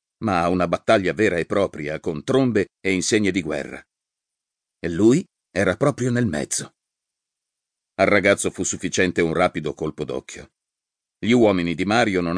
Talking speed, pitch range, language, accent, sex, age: 155 wpm, 80-105 Hz, Italian, native, male, 50-69